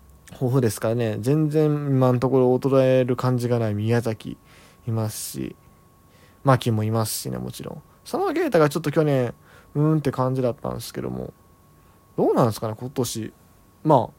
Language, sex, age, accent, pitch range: Japanese, male, 20-39, native, 110-145 Hz